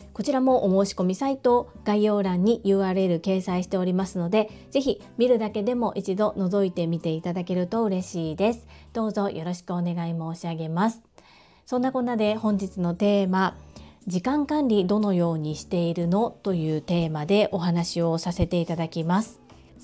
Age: 40-59